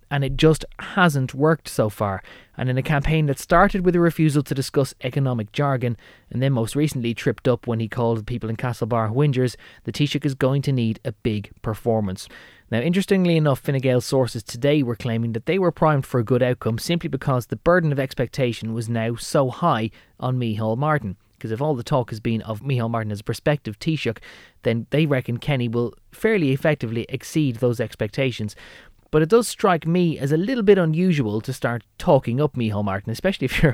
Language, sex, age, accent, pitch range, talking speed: English, male, 20-39, Irish, 115-145 Hz, 205 wpm